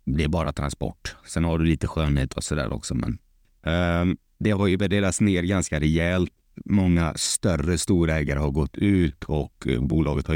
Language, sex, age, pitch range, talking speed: Swedish, male, 30-49, 80-100 Hz, 170 wpm